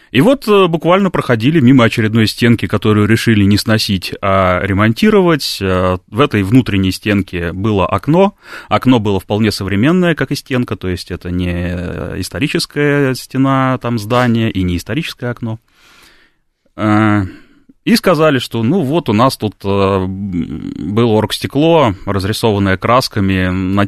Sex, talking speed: male, 125 wpm